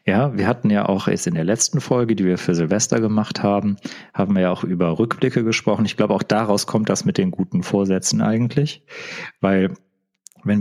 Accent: German